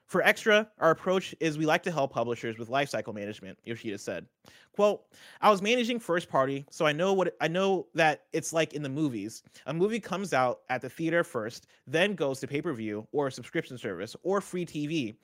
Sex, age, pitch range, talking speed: male, 30-49, 120-180 Hz, 195 wpm